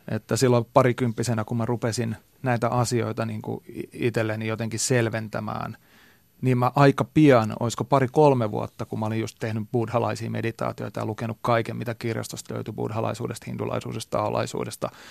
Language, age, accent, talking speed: Finnish, 30-49, native, 145 wpm